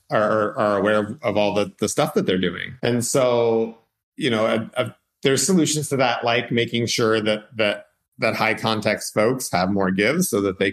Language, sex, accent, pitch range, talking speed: English, male, American, 105-120 Hz, 195 wpm